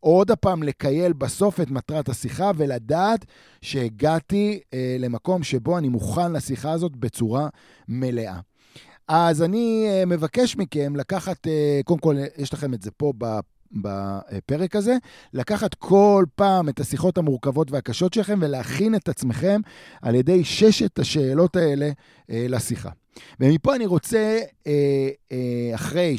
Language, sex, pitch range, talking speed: Hebrew, male, 120-165 Hz, 120 wpm